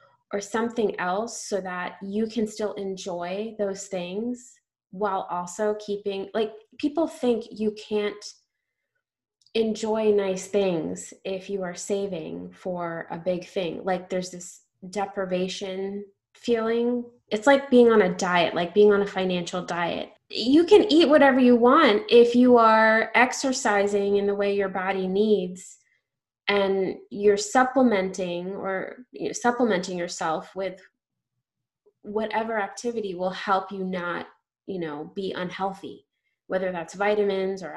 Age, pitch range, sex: 20-39, 185-230 Hz, female